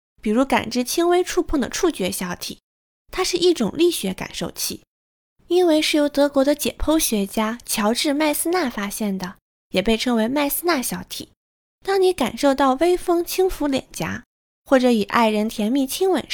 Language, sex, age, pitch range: Chinese, female, 20-39, 215-330 Hz